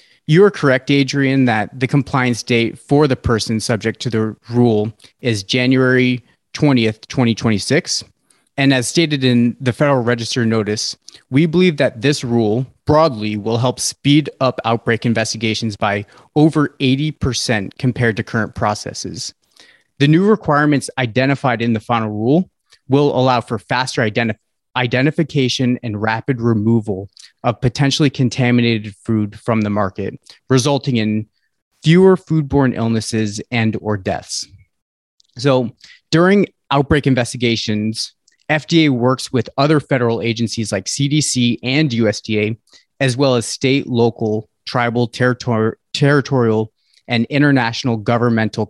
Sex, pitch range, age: male, 110-140 Hz, 30-49